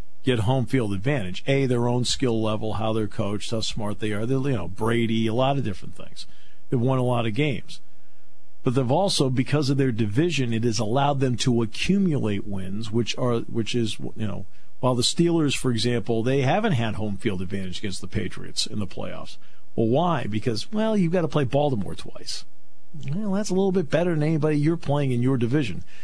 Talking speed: 210 wpm